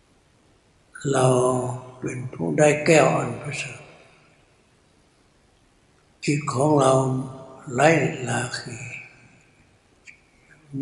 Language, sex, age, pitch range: Thai, male, 60-79, 125-145 Hz